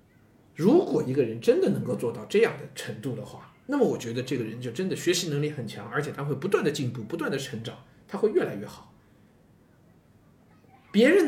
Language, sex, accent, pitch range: Chinese, male, native, 135-210 Hz